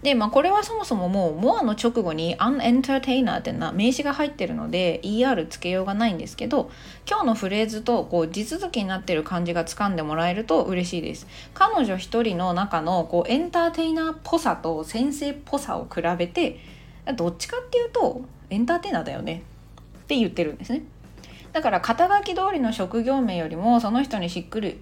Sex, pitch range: female, 175-275 Hz